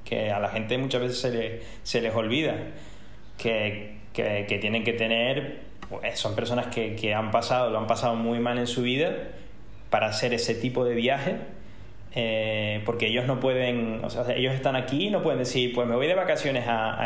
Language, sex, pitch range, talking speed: Spanish, male, 110-130 Hz, 185 wpm